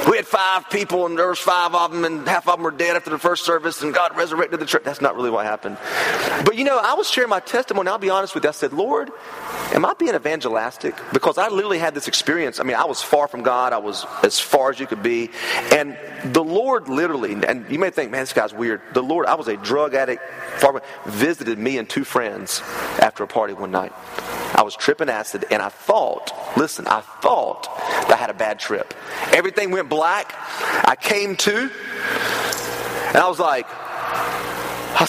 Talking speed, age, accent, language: 215 wpm, 30-49, American, English